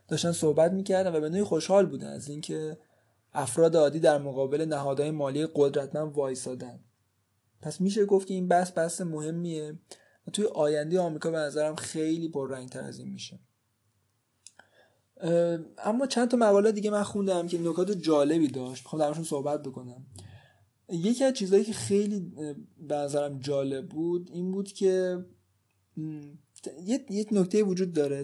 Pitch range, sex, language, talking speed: 135-180 Hz, male, Persian, 155 wpm